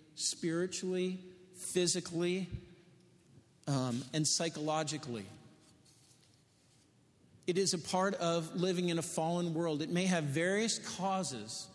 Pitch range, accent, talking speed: 140-180 Hz, American, 100 wpm